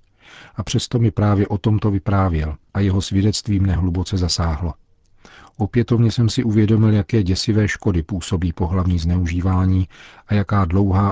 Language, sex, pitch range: Czech, male, 90-100 Hz